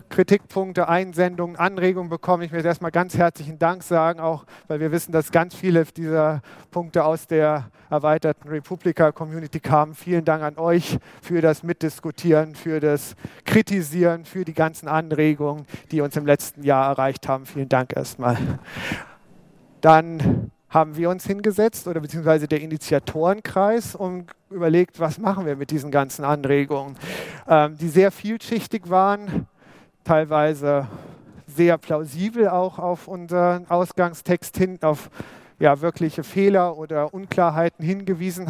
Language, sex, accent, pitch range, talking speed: English, male, German, 155-185 Hz, 135 wpm